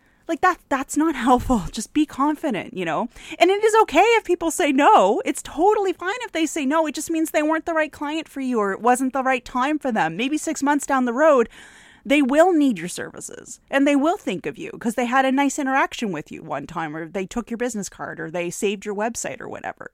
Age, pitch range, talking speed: 30-49, 225-305 Hz, 250 wpm